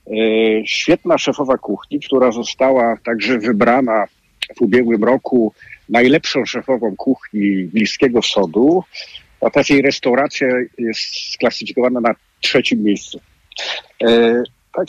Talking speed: 100 wpm